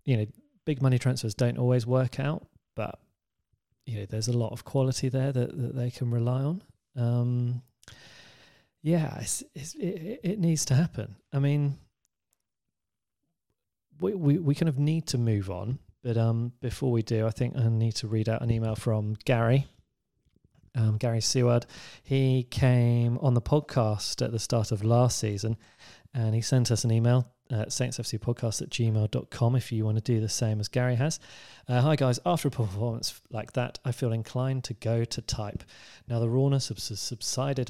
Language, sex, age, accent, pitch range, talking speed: English, male, 30-49, British, 110-130 Hz, 180 wpm